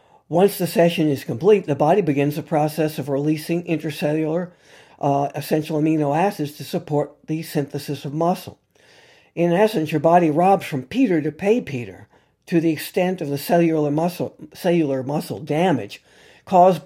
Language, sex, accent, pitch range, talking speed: English, male, American, 140-175 Hz, 155 wpm